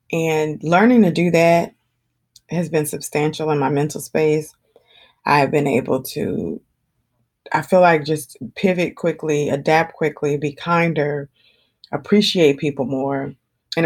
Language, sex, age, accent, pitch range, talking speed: English, female, 20-39, American, 150-180 Hz, 135 wpm